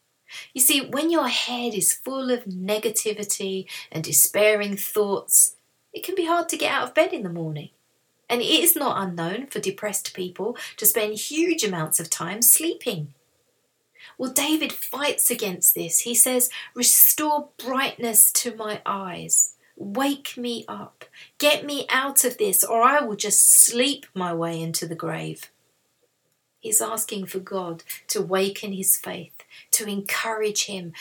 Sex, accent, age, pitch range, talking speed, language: female, British, 40-59, 190-260 Hz, 155 wpm, English